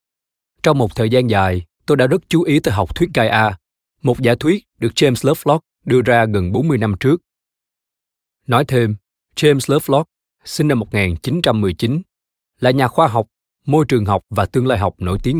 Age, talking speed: 20-39, 185 wpm